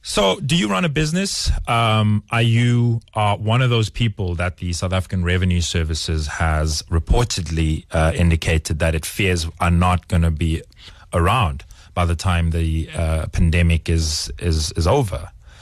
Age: 30-49